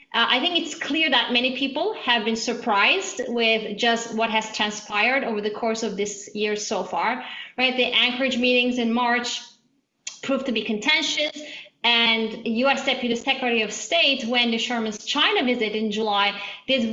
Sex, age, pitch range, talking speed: female, 30-49, 225-270 Hz, 170 wpm